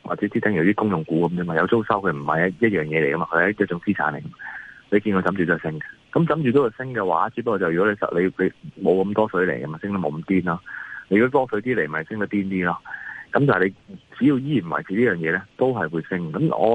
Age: 30-49